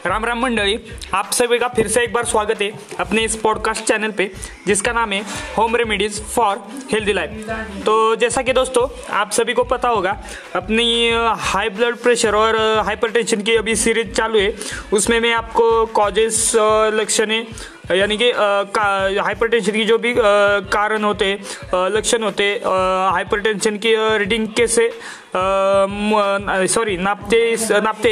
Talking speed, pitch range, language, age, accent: 145 wpm, 210-235 Hz, Hindi, 20-39, native